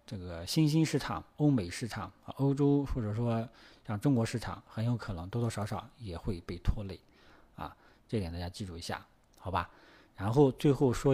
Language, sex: Chinese, male